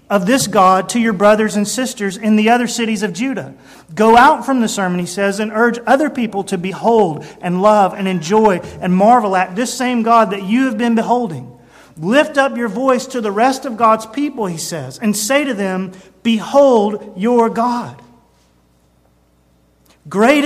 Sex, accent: male, American